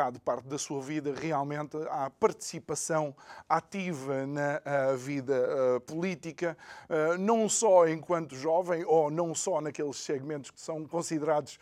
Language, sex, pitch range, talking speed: Portuguese, male, 140-165 Hz, 130 wpm